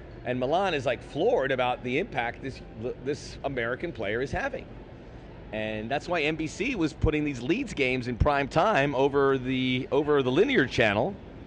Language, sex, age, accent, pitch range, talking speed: English, male, 40-59, American, 115-165 Hz, 165 wpm